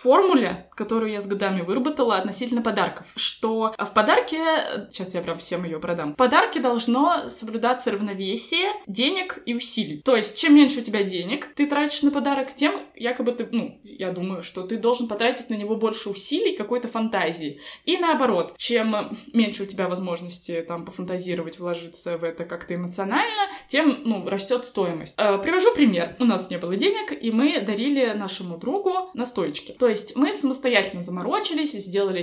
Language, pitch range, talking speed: Russian, 195-270 Hz, 170 wpm